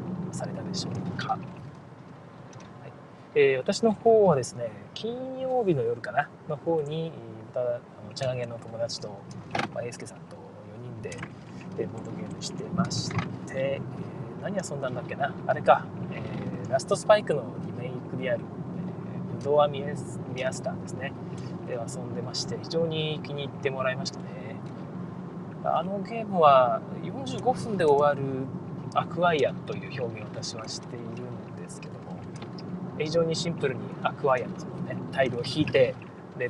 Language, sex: Japanese, male